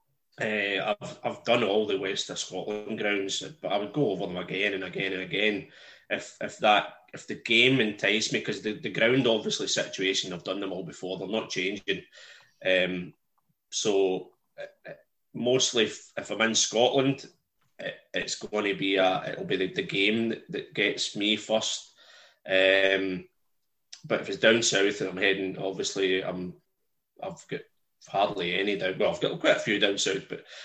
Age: 20-39